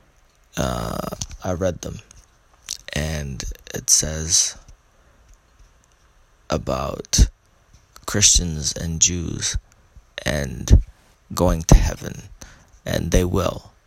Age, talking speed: 20-39, 80 wpm